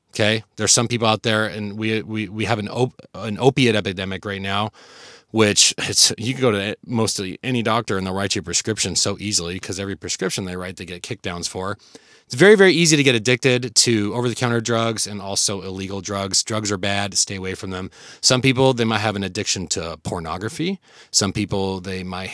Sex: male